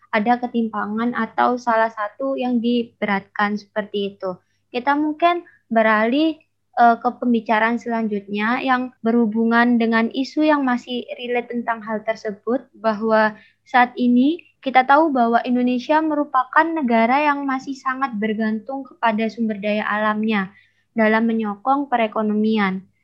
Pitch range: 225-255 Hz